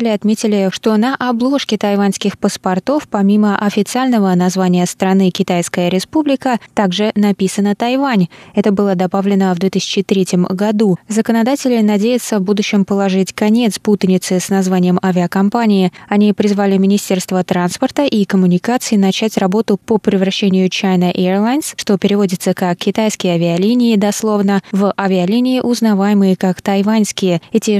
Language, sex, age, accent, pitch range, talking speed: Russian, female, 20-39, native, 190-220 Hz, 120 wpm